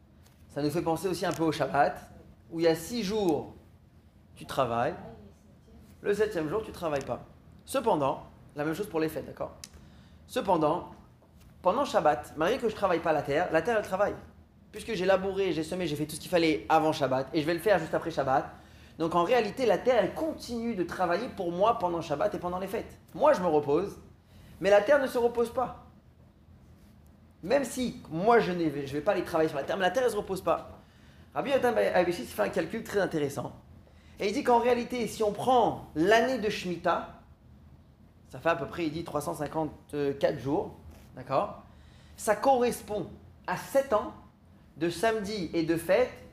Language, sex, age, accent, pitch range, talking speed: French, male, 30-49, French, 150-215 Hz, 200 wpm